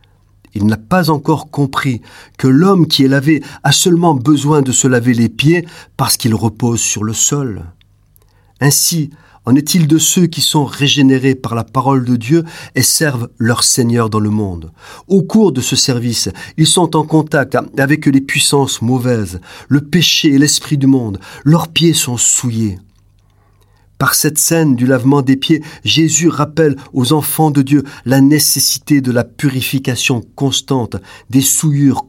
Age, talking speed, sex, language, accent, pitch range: 40-59, 165 wpm, male, French, French, 105-150 Hz